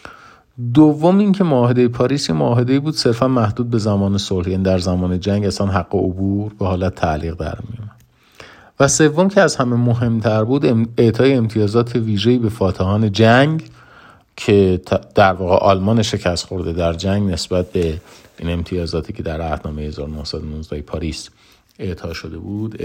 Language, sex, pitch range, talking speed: Persian, male, 90-115 Hz, 150 wpm